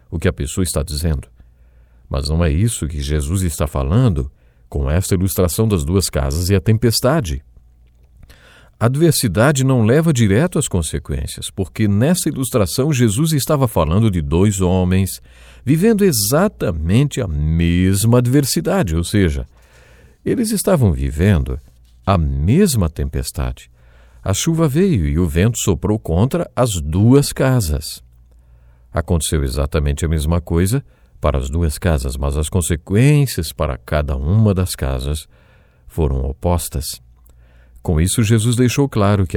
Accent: Brazilian